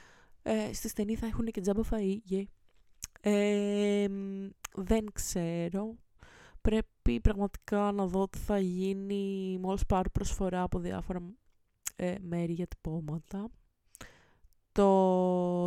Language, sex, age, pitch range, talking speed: Greek, female, 20-39, 160-205 Hz, 90 wpm